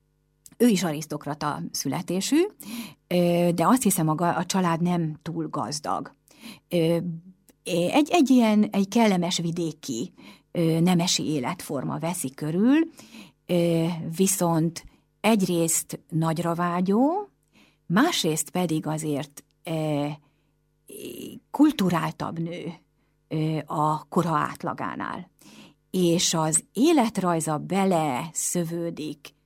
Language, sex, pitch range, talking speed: Hungarian, female, 155-195 Hz, 80 wpm